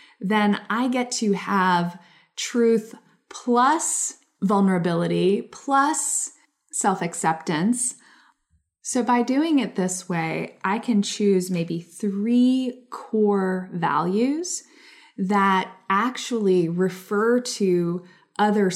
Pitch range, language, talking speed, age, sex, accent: 180-235 Hz, English, 90 wpm, 20-39, female, American